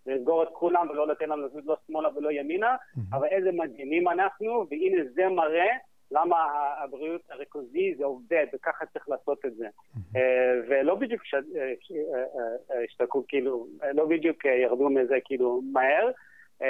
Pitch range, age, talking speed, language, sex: 140-180 Hz, 30-49, 120 wpm, Hebrew, male